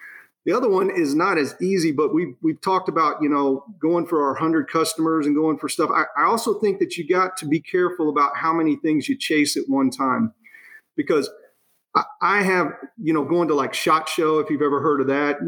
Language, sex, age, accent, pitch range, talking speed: English, male, 40-59, American, 150-225 Hz, 230 wpm